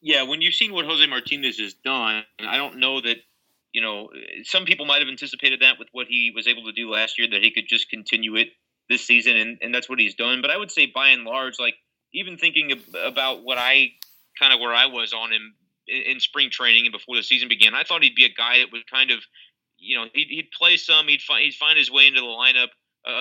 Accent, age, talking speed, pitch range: American, 30-49, 250 wpm, 115-135 Hz